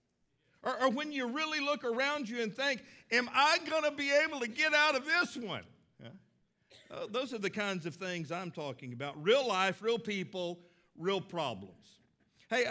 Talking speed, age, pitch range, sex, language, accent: 175 wpm, 50-69, 195-250 Hz, male, English, American